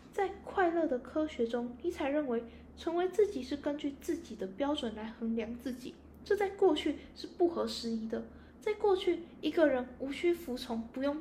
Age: 10-29